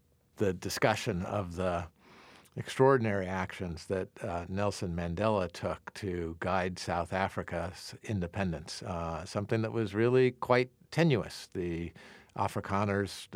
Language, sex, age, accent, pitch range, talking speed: English, male, 50-69, American, 90-110 Hz, 110 wpm